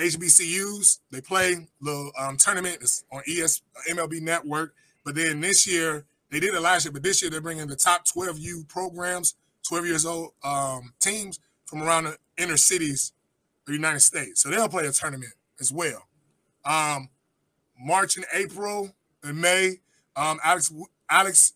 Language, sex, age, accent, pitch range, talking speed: English, male, 20-39, American, 145-180 Hz, 170 wpm